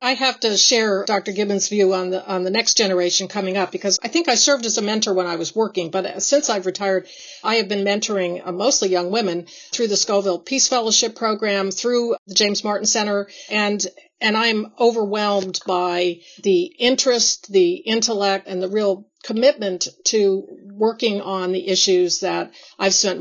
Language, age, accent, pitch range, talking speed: English, 50-69, American, 185-225 Hz, 180 wpm